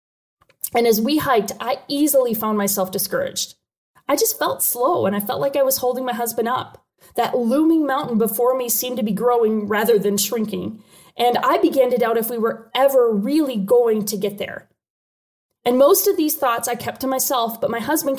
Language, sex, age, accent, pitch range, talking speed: English, female, 20-39, American, 220-275 Hz, 200 wpm